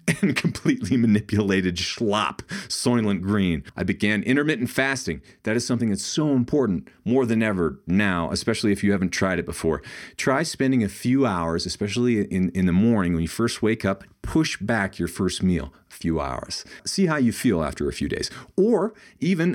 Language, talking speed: English, 185 wpm